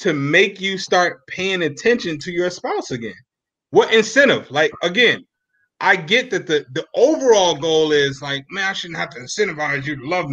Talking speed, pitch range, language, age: 185 wpm, 135-185 Hz, English, 30-49